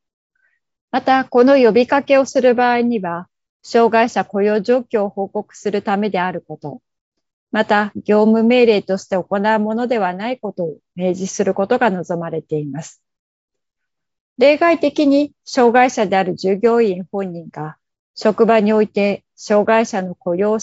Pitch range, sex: 190-240 Hz, female